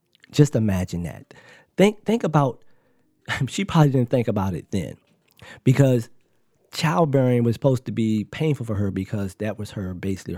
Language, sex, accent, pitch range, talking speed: English, male, American, 110-145 Hz, 155 wpm